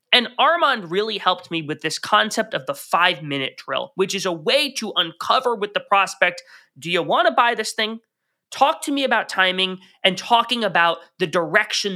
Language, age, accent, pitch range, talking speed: English, 20-39, American, 170-250 Hz, 190 wpm